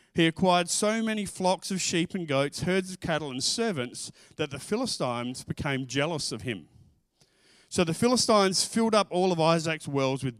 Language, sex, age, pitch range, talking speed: English, male, 40-59, 125-170 Hz, 180 wpm